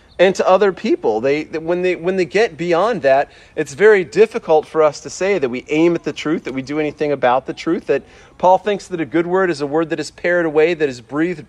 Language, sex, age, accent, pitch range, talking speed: English, male, 40-59, American, 140-180 Hz, 255 wpm